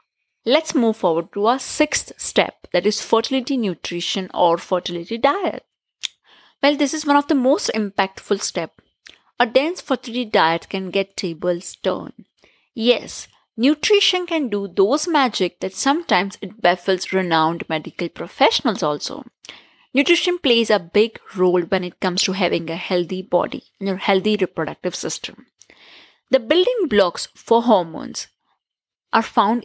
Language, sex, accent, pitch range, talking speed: English, female, Indian, 185-250 Hz, 140 wpm